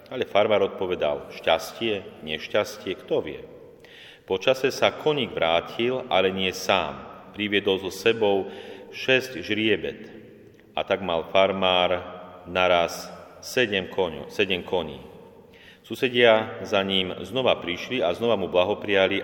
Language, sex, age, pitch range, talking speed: Slovak, male, 40-59, 90-120 Hz, 110 wpm